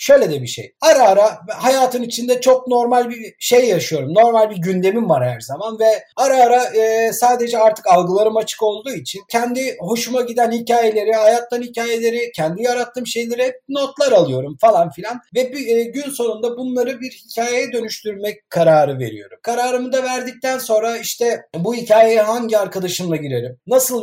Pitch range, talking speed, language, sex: 210-245 Hz, 155 wpm, Turkish, male